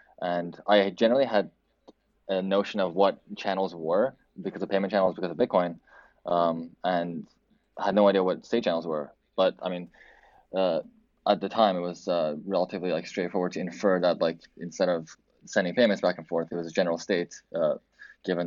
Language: English